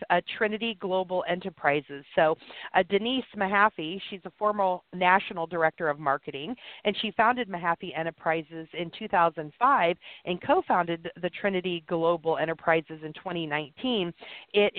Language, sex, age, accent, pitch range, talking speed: English, female, 40-59, American, 175-215 Hz, 125 wpm